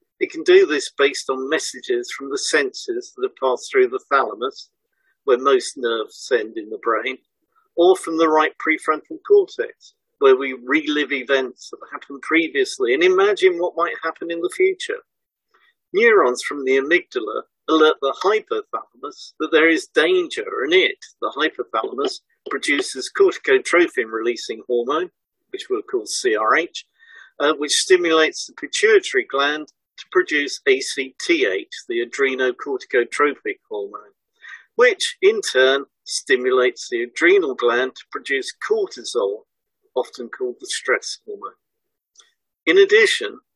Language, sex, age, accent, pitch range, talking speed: English, male, 50-69, British, 360-425 Hz, 130 wpm